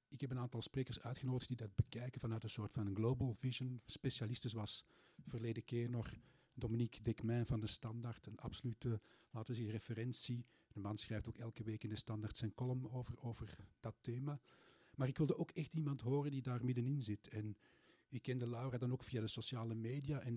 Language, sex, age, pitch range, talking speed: Dutch, male, 50-69, 110-135 Hz, 200 wpm